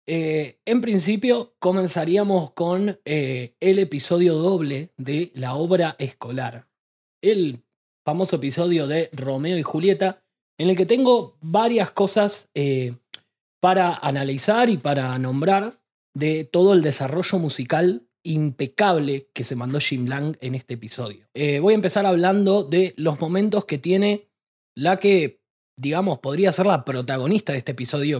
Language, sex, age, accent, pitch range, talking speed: Spanish, male, 20-39, Argentinian, 140-195 Hz, 140 wpm